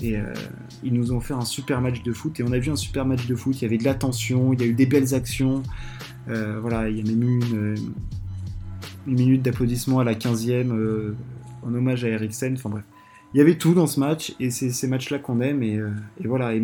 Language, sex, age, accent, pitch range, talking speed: French, male, 20-39, French, 120-150 Hz, 255 wpm